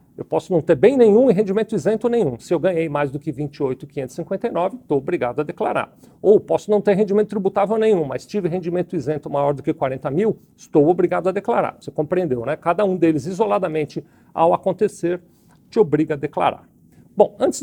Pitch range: 150-200 Hz